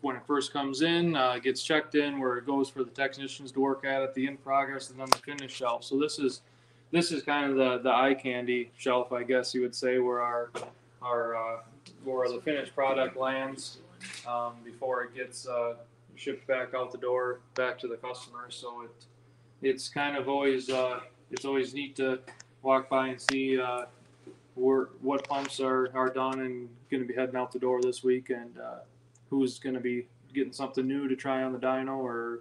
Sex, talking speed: male, 210 wpm